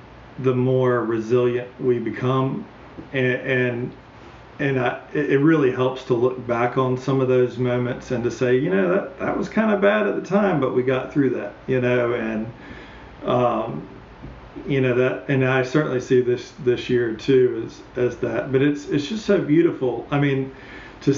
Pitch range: 125-145 Hz